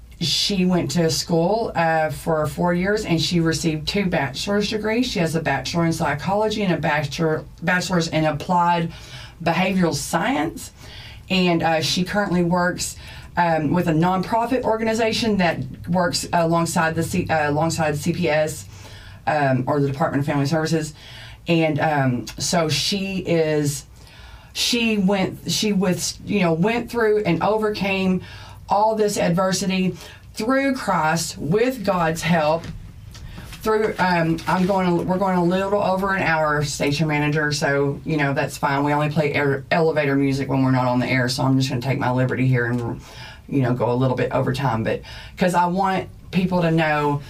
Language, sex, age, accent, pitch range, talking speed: English, female, 30-49, American, 145-185 Hz, 165 wpm